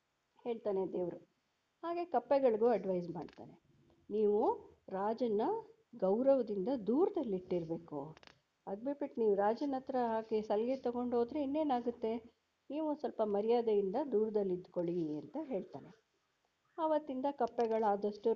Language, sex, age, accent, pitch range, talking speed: Kannada, female, 50-69, native, 200-295 Hz, 85 wpm